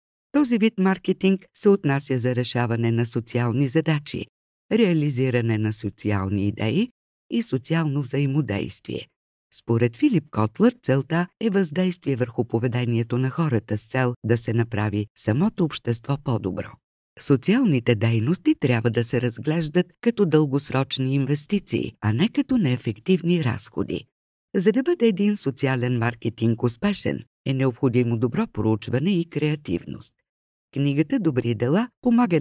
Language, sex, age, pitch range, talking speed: Bulgarian, female, 50-69, 115-180 Hz, 120 wpm